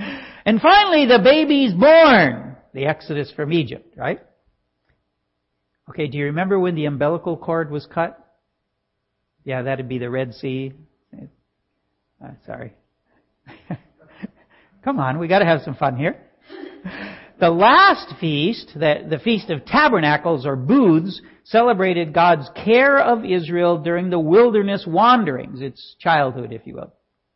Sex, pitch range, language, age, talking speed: male, 145-215 Hz, English, 60-79, 135 wpm